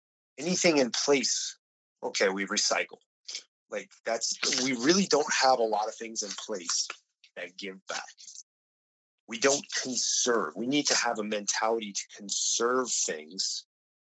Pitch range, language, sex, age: 95-130 Hz, English, male, 30-49